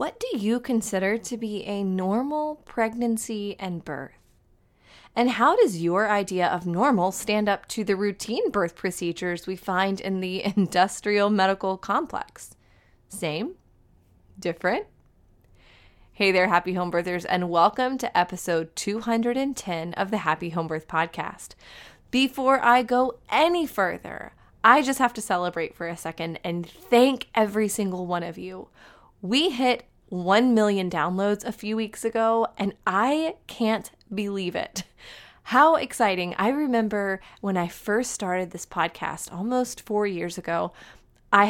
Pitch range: 175-225 Hz